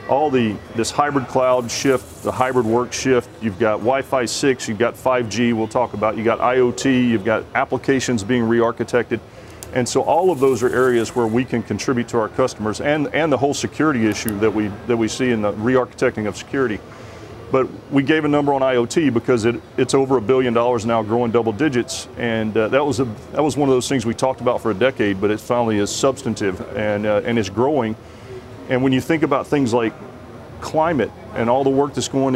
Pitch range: 115-135 Hz